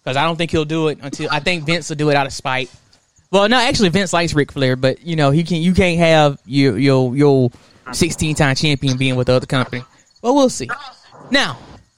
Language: English